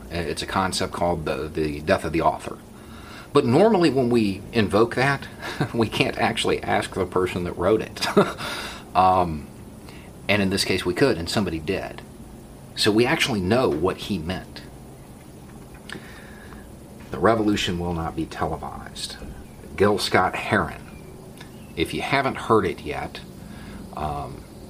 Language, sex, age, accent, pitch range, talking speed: English, male, 40-59, American, 85-115 Hz, 140 wpm